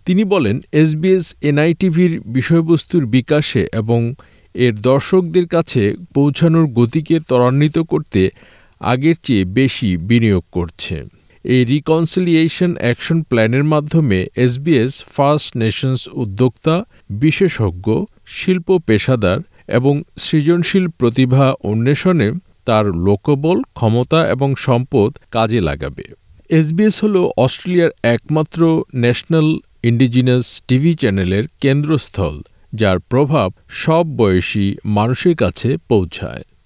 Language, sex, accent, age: Bengali, male, native, 50-69